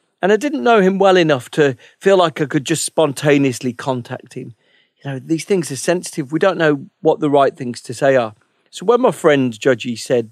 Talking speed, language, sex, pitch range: 220 wpm, English, male, 125-160 Hz